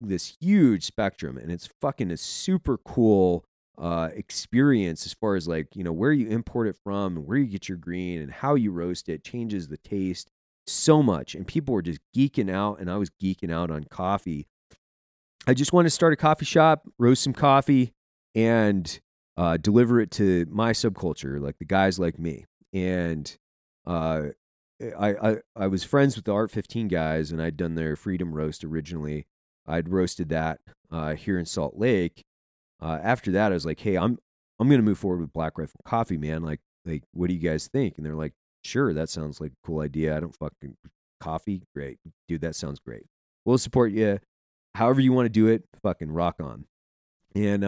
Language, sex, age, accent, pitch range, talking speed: English, male, 30-49, American, 80-115 Hz, 200 wpm